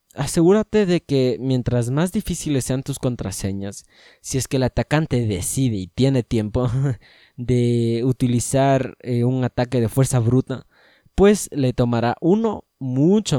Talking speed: 140 wpm